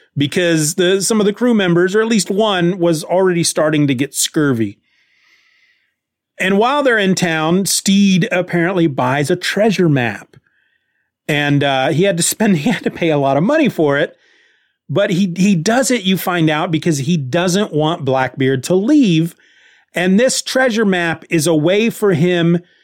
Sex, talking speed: male, 180 wpm